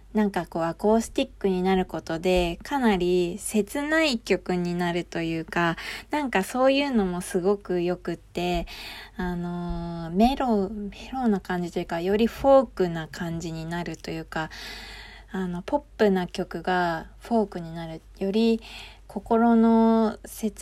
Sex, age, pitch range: female, 20-39, 175-225 Hz